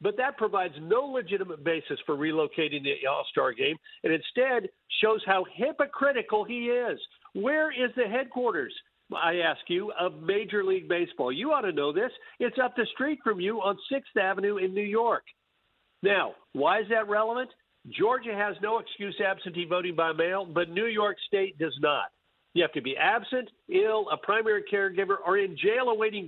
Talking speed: 180 wpm